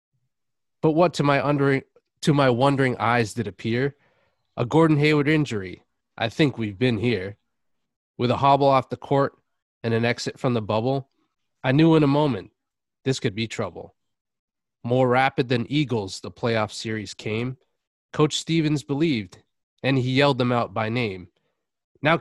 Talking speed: 155 wpm